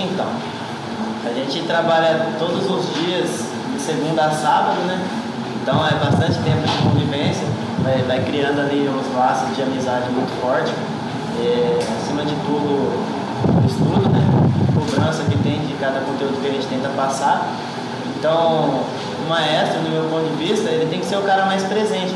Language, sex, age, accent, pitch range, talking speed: Portuguese, male, 20-39, Brazilian, 135-165 Hz, 170 wpm